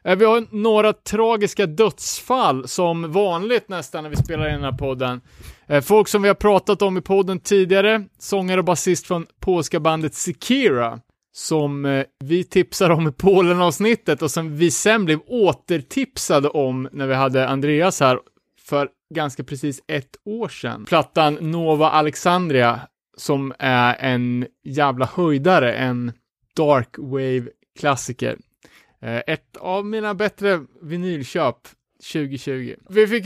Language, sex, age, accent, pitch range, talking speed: Swedish, male, 30-49, Norwegian, 145-195 Hz, 135 wpm